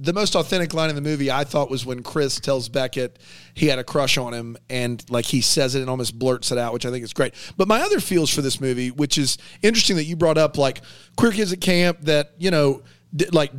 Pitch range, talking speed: 135-170 Hz, 255 wpm